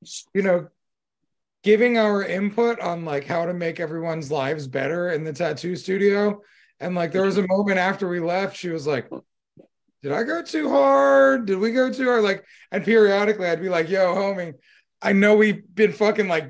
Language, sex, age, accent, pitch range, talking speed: English, male, 30-49, American, 165-205 Hz, 195 wpm